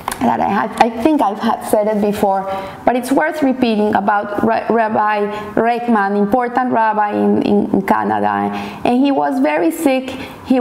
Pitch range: 215-300 Hz